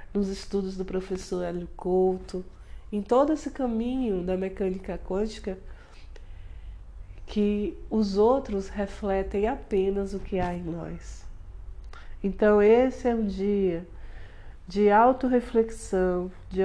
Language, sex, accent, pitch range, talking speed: Portuguese, female, Brazilian, 175-220 Hz, 110 wpm